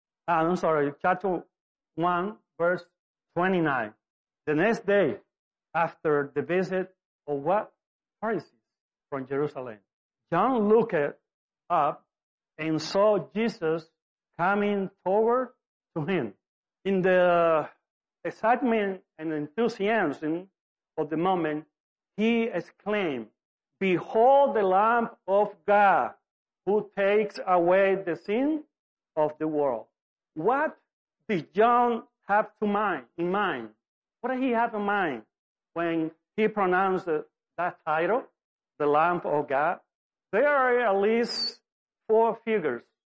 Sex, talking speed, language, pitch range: male, 110 wpm, English, 165-220 Hz